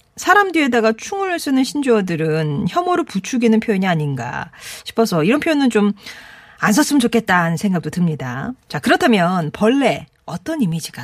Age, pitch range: 40-59, 165-235 Hz